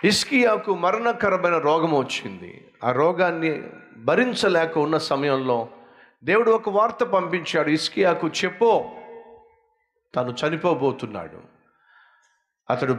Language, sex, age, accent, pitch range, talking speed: Telugu, male, 50-69, native, 130-185 Hz, 85 wpm